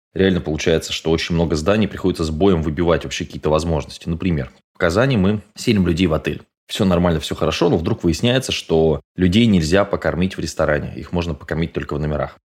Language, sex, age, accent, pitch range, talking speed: Russian, male, 20-39, native, 80-100 Hz, 190 wpm